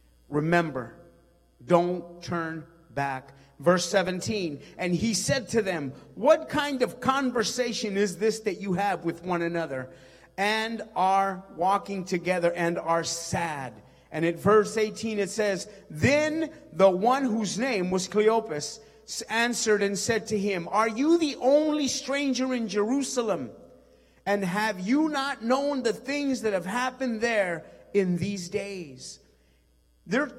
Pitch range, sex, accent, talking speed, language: 160-225 Hz, male, American, 140 wpm, English